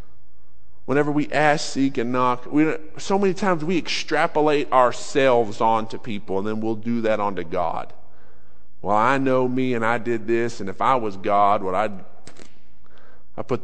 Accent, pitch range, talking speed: American, 105-125 Hz, 170 wpm